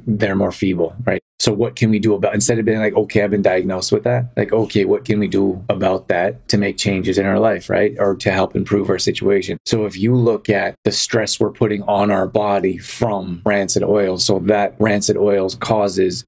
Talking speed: 225 wpm